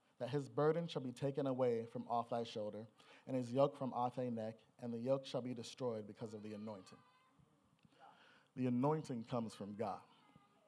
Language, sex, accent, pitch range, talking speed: English, male, American, 120-145 Hz, 185 wpm